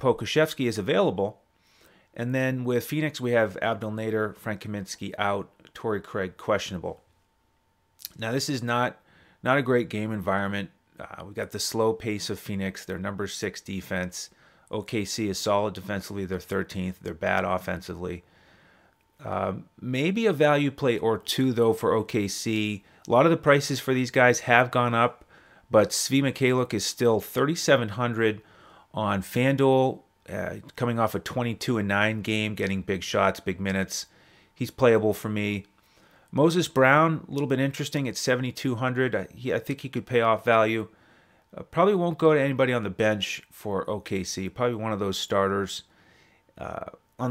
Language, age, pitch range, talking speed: English, 30-49, 100-130 Hz, 160 wpm